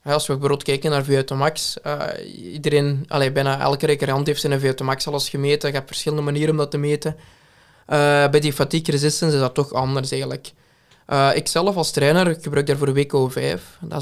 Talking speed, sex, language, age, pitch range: 195 wpm, male, Dutch, 20-39, 135-150 Hz